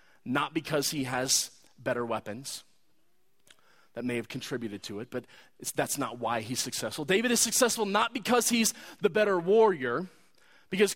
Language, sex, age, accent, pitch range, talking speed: English, male, 30-49, American, 165-235 Hz, 160 wpm